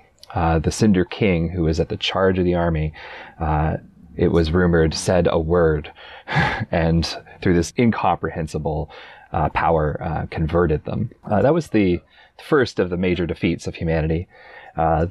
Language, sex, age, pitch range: English, male, 30-49, 85-105 Hz